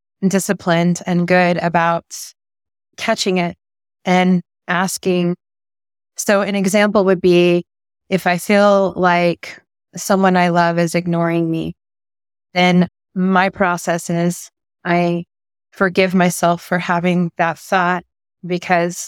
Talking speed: 110 wpm